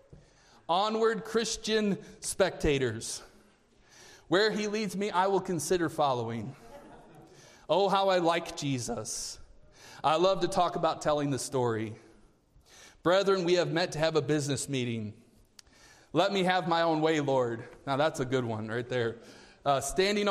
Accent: American